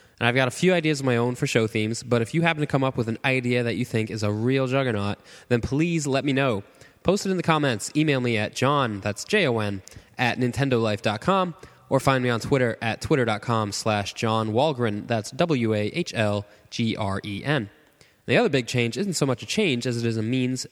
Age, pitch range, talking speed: 10-29, 110-140 Hz, 210 wpm